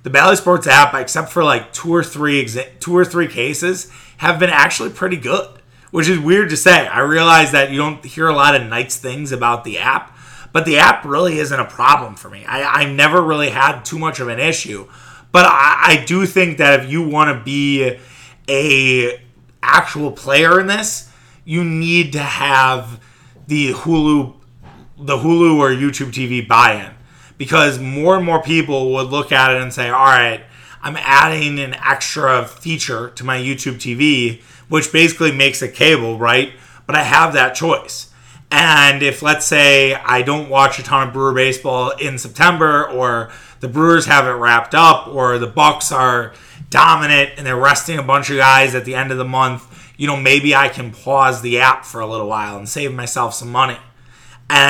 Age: 30-49